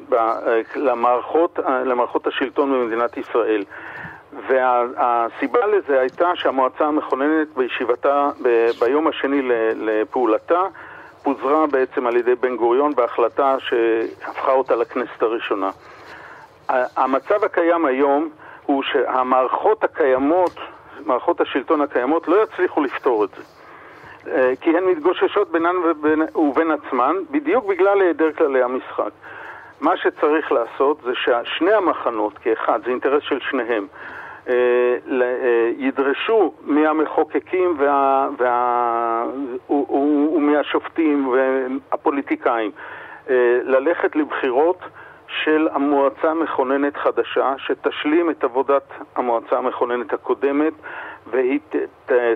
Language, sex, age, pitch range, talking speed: Hebrew, male, 50-69, 125-185 Hz, 95 wpm